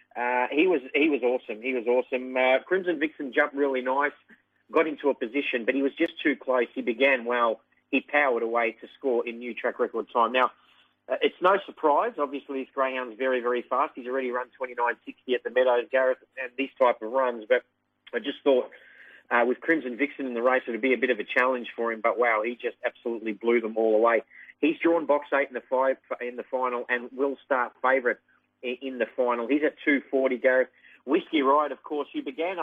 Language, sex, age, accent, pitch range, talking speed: English, male, 30-49, Australian, 120-140 Hz, 225 wpm